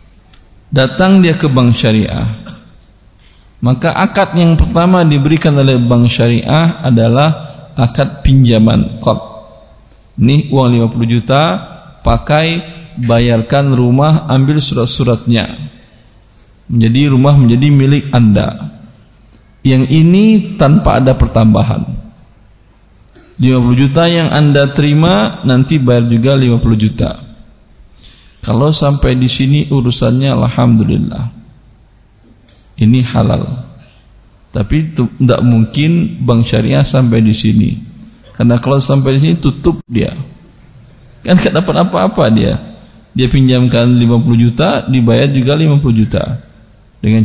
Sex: male